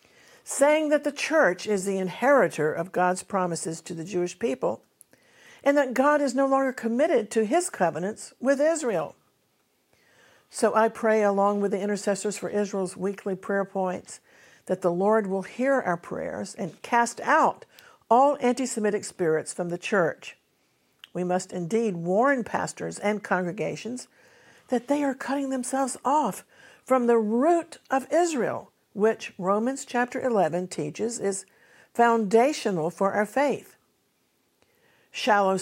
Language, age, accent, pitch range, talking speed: English, 60-79, American, 185-245 Hz, 140 wpm